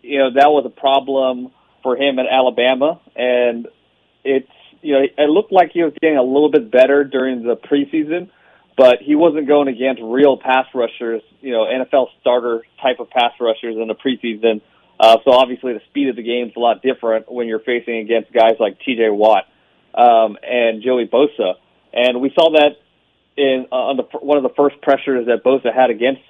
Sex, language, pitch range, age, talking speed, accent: male, English, 120-140 Hz, 40-59, 200 wpm, American